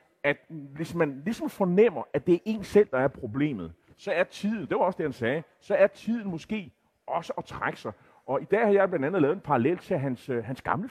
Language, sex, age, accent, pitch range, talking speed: Danish, male, 30-49, native, 140-190 Hz, 240 wpm